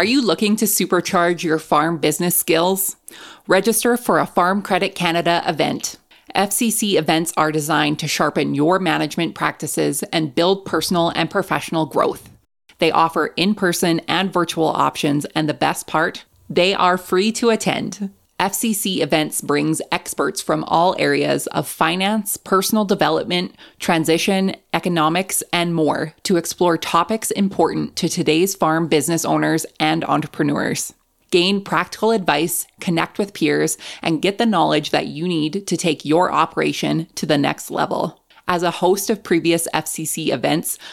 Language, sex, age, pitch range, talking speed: English, female, 30-49, 155-185 Hz, 145 wpm